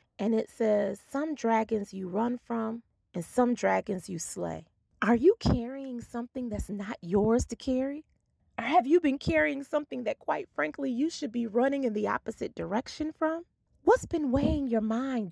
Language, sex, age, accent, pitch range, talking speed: English, female, 30-49, American, 195-295 Hz, 175 wpm